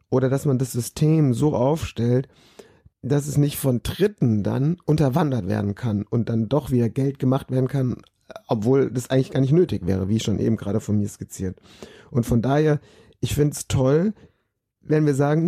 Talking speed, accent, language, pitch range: 185 wpm, German, German, 120-155 Hz